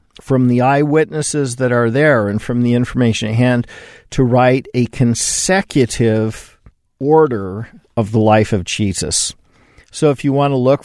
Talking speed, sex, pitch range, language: 155 wpm, male, 110-135 Hz, English